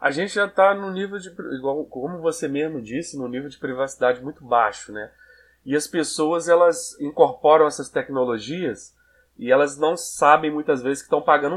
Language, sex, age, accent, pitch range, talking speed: Portuguese, male, 20-39, Brazilian, 125-160 Hz, 175 wpm